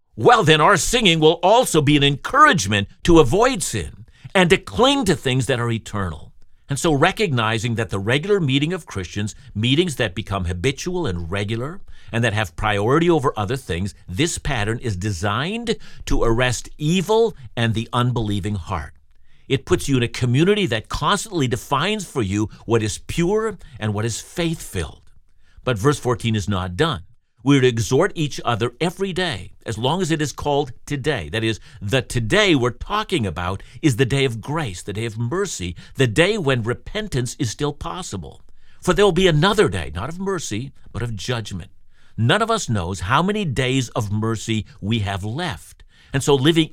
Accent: American